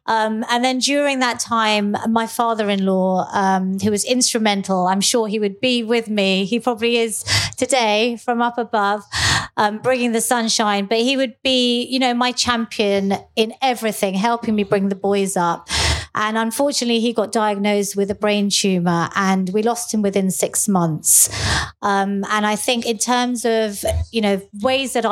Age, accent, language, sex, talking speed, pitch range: 30-49, British, English, female, 170 wpm, 195-235 Hz